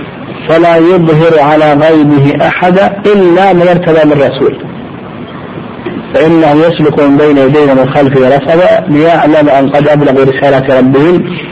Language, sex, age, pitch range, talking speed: Arabic, male, 50-69, 140-180 Hz, 125 wpm